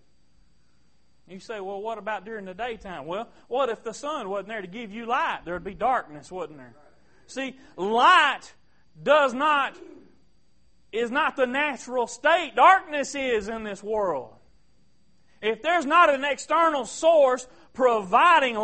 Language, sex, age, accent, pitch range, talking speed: English, male, 30-49, American, 210-265 Hz, 150 wpm